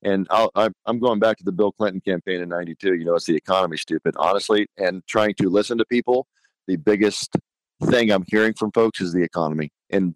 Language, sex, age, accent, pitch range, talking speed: English, male, 40-59, American, 85-100 Hz, 205 wpm